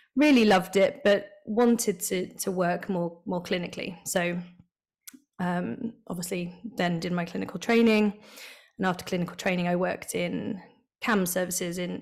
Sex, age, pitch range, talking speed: female, 20-39, 185-240 Hz, 145 wpm